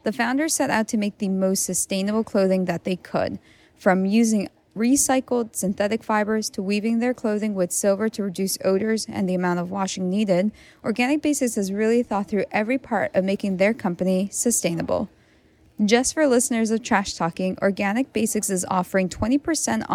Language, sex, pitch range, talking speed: English, female, 195-235 Hz, 170 wpm